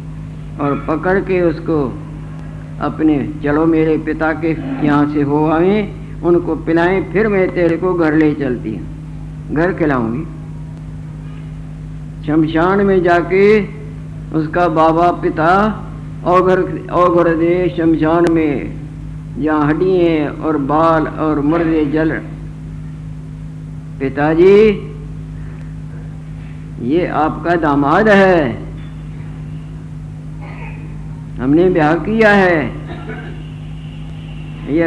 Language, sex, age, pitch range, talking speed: Hindi, female, 50-69, 150-165 Hz, 90 wpm